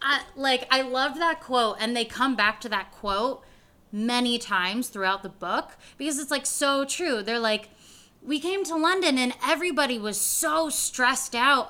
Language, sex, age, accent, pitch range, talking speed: English, female, 20-39, American, 215-275 Hz, 175 wpm